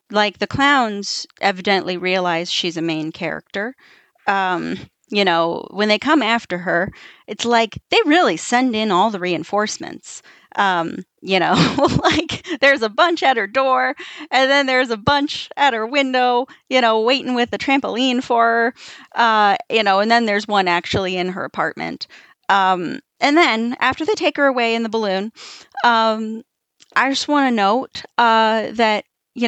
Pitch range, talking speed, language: 205-270 Hz, 165 wpm, English